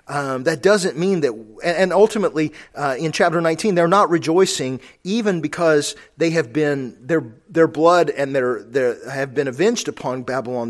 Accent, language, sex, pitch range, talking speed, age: American, English, male, 135-190 Hz, 170 wpm, 40-59